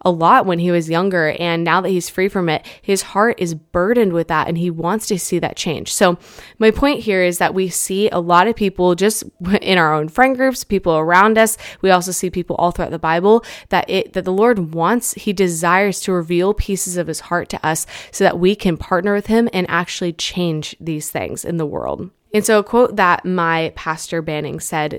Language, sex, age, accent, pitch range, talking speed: English, female, 20-39, American, 170-195 Hz, 230 wpm